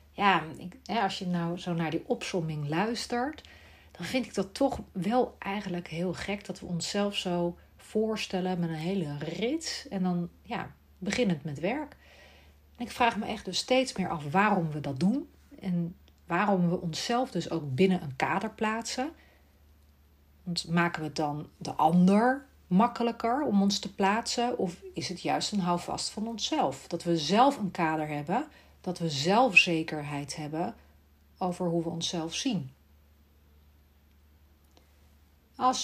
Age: 40-59